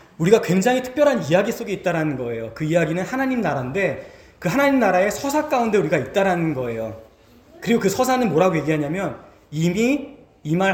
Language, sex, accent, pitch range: Korean, male, native, 160-240 Hz